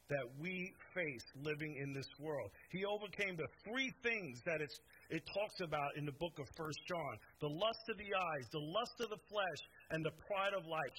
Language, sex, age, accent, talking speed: English, male, 50-69, American, 200 wpm